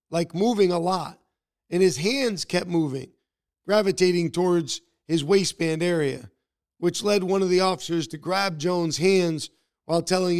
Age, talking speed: 40-59, 150 wpm